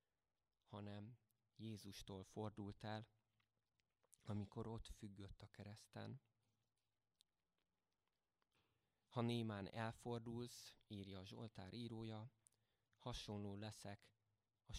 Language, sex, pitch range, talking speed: Hungarian, male, 100-115 Hz, 75 wpm